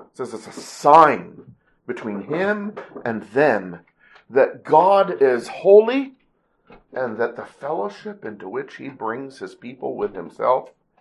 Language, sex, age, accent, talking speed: English, male, 50-69, American, 135 wpm